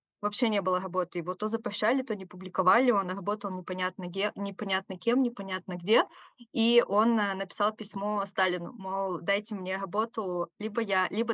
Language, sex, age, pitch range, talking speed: Russian, female, 20-39, 180-220 Hz, 160 wpm